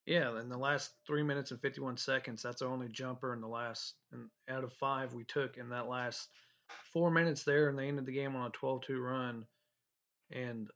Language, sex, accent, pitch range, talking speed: English, male, American, 120-140 Hz, 225 wpm